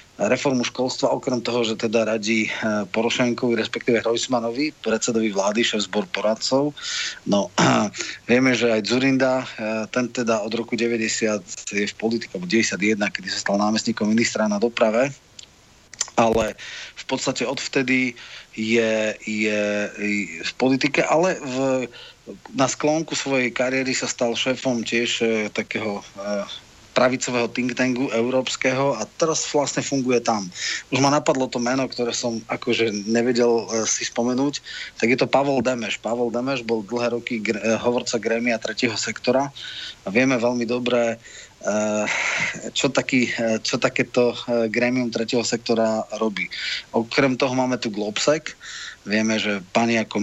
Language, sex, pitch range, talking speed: Slovak, male, 110-130 Hz, 130 wpm